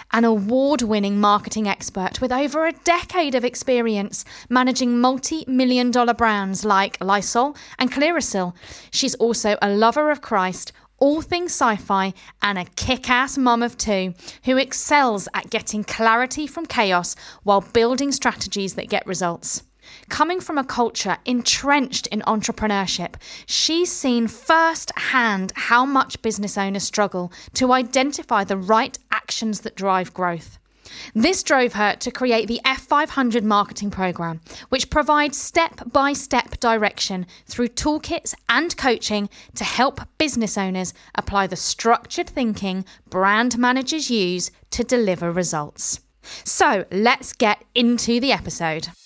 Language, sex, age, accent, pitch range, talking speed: English, female, 30-49, British, 200-265 Hz, 130 wpm